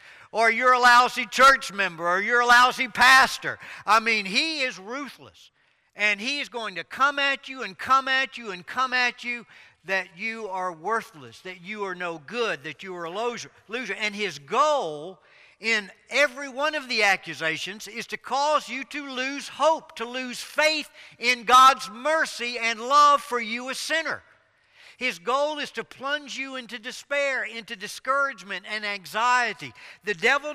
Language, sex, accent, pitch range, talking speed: English, male, American, 190-260 Hz, 175 wpm